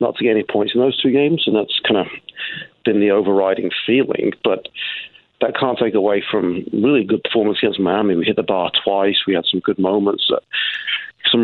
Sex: male